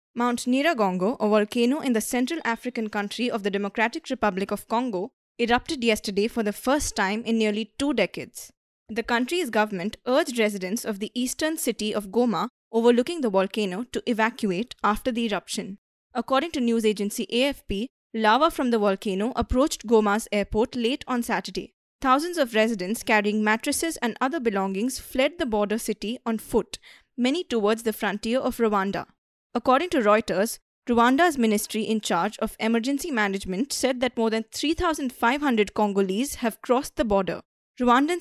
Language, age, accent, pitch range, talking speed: English, 20-39, Indian, 210-255 Hz, 155 wpm